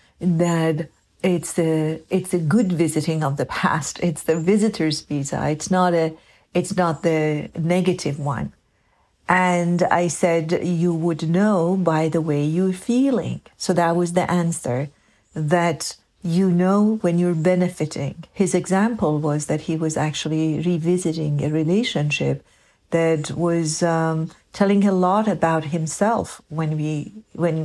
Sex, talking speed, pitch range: female, 140 wpm, 160-195 Hz